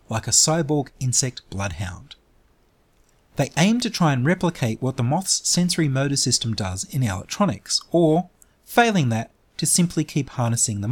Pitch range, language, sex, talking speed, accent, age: 115-160 Hz, English, male, 155 wpm, Australian, 30-49